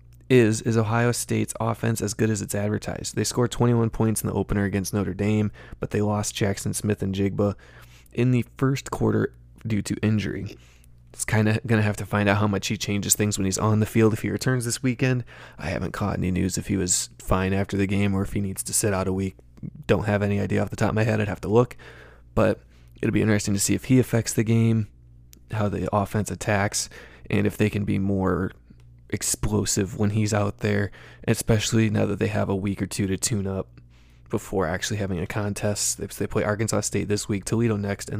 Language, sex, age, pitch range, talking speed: English, male, 20-39, 95-110 Hz, 230 wpm